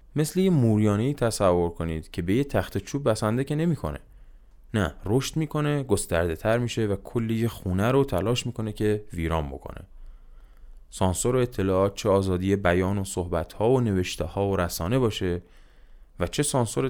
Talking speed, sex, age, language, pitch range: 155 wpm, male, 20-39, Persian, 90-115 Hz